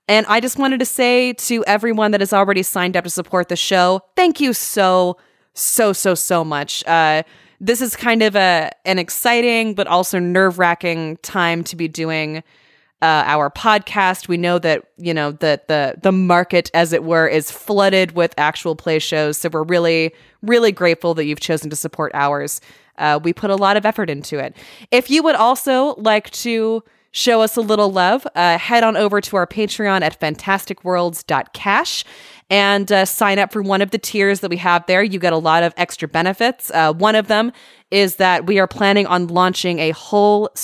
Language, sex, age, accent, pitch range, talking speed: English, female, 20-39, American, 165-215 Hz, 200 wpm